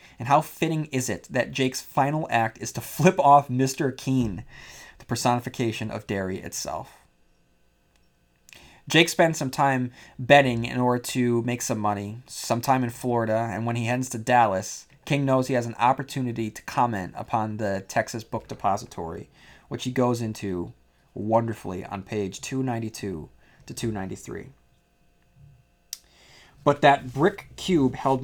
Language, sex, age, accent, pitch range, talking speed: English, male, 30-49, American, 115-135 Hz, 145 wpm